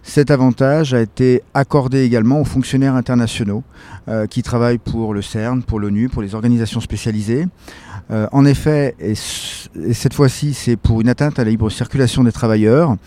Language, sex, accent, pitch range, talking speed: French, male, French, 115-135 Hz, 175 wpm